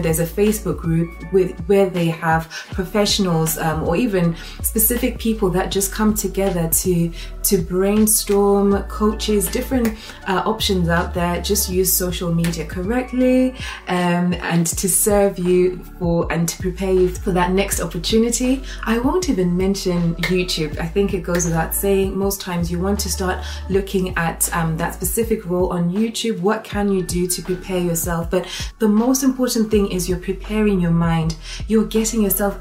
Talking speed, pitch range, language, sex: 165 wpm, 175-215 Hz, English, female